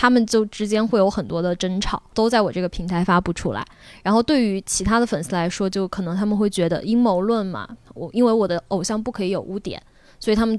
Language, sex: Chinese, female